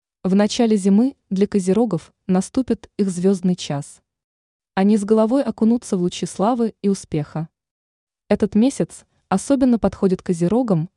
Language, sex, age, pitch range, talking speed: Russian, female, 20-39, 170-215 Hz, 125 wpm